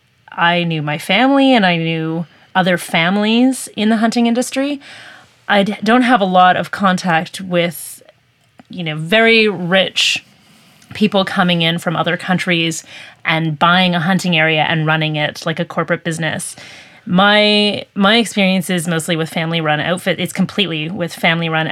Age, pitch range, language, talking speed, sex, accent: 30-49, 150-185 Hz, English, 155 wpm, female, American